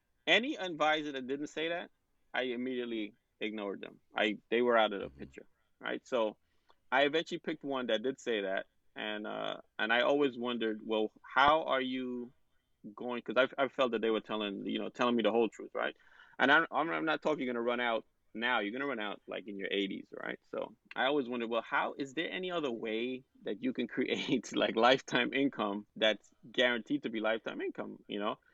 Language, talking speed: English, 210 wpm